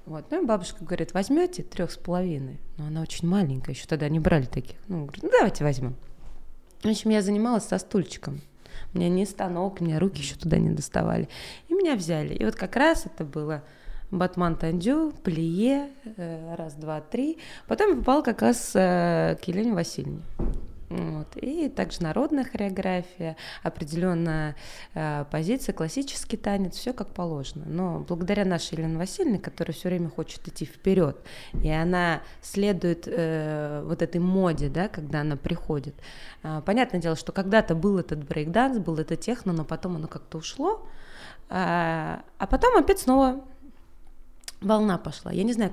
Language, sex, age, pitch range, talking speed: Russian, female, 20-39, 155-205 Hz, 160 wpm